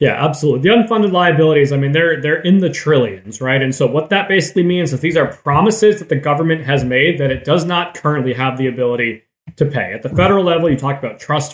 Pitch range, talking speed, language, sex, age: 130-160 Hz, 235 wpm, English, male, 20-39